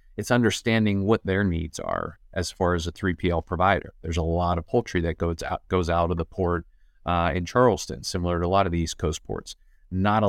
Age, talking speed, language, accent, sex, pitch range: 30-49, 225 wpm, English, American, male, 85-95 Hz